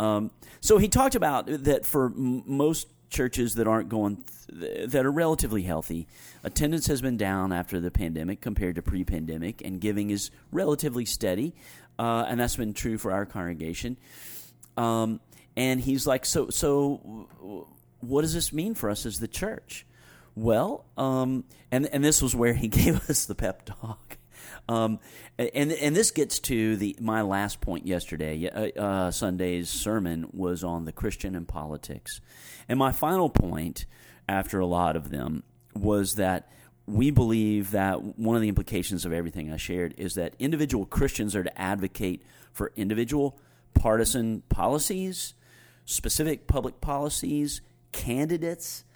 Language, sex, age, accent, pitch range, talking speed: English, male, 40-59, American, 95-130 Hz, 160 wpm